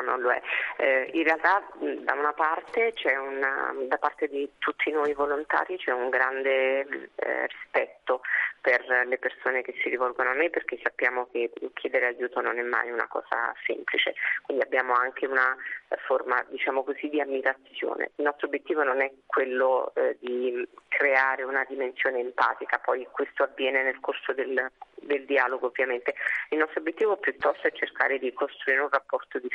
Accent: native